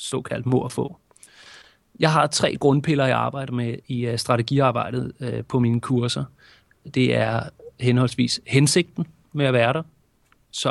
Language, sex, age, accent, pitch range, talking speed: Danish, male, 30-49, native, 125-155 Hz, 140 wpm